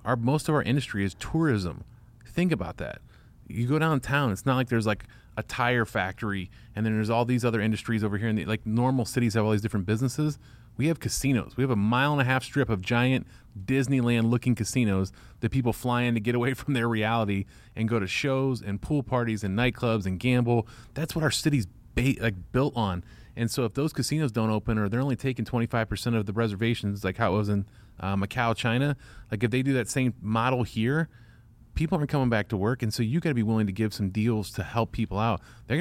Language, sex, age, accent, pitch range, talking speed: English, male, 30-49, American, 110-125 Hz, 245 wpm